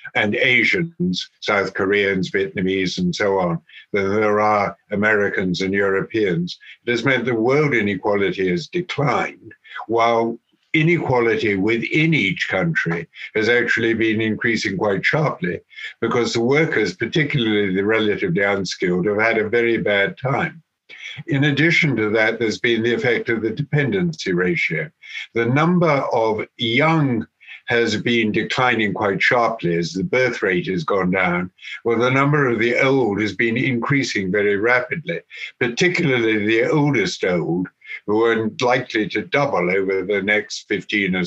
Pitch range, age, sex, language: 105-135 Hz, 60-79, male, English